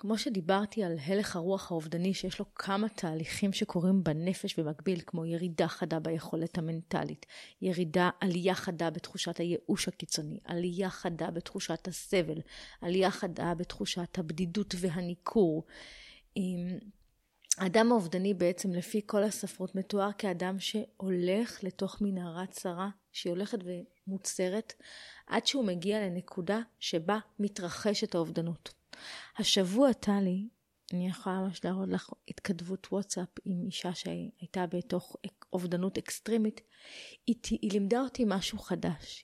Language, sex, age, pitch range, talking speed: Hebrew, female, 30-49, 180-215 Hz, 120 wpm